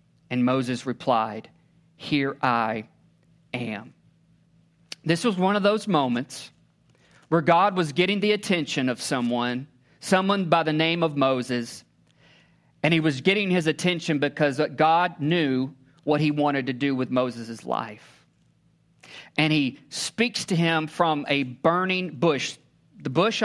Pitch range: 140-170 Hz